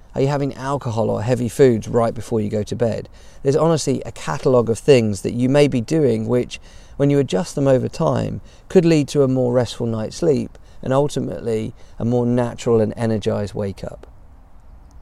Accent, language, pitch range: British, English, 110-135 Hz